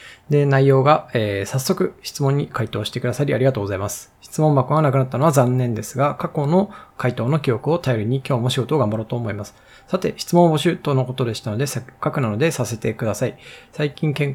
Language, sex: Japanese, male